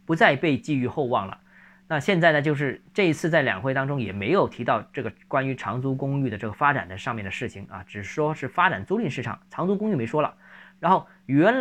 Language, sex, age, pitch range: Chinese, male, 20-39, 120-185 Hz